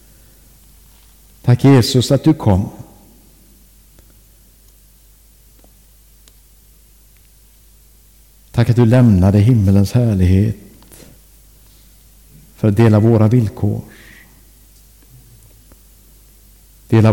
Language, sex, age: English, male, 60-79